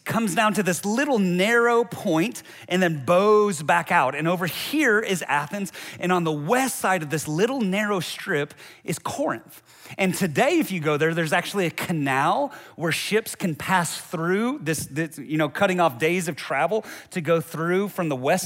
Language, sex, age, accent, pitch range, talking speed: English, male, 30-49, American, 155-200 Hz, 190 wpm